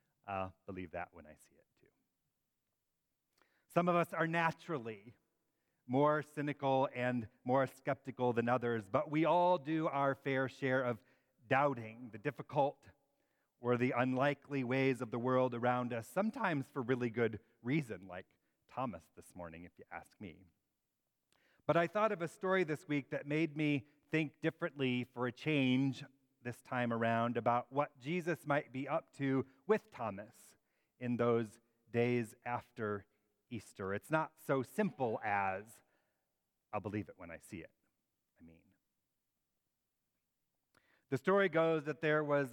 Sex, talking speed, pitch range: male, 150 wpm, 120-155 Hz